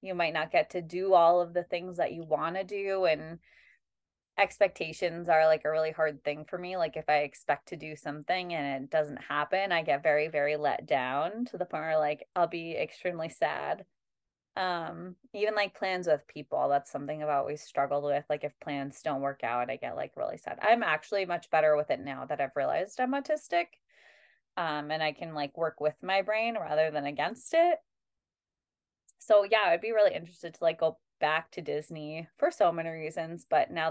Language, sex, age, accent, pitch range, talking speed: English, female, 20-39, American, 155-185 Hz, 205 wpm